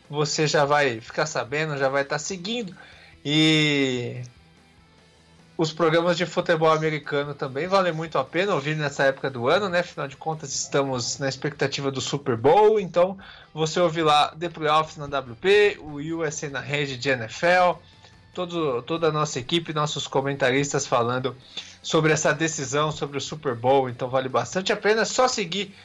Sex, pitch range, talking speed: male, 140-185 Hz, 165 wpm